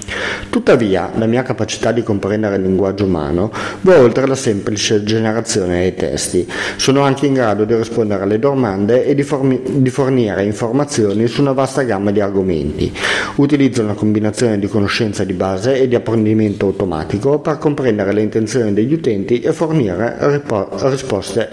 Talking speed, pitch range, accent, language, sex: 155 wpm, 100-130 Hz, native, Italian, male